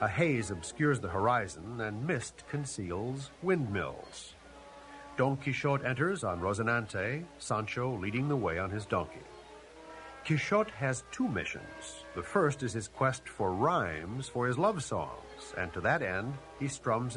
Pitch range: 105-135 Hz